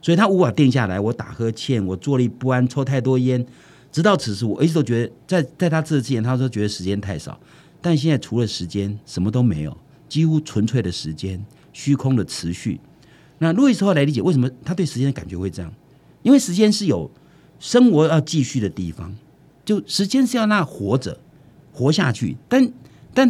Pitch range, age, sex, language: 110-160 Hz, 50-69, male, Chinese